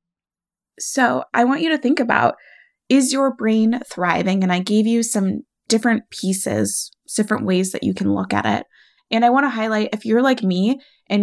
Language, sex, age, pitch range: English, female, 20-39, 195-245 Hz